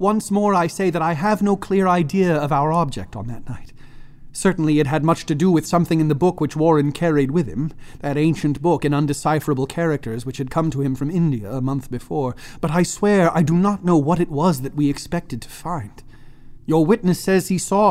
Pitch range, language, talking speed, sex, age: 135-165 Hz, English, 230 wpm, male, 30-49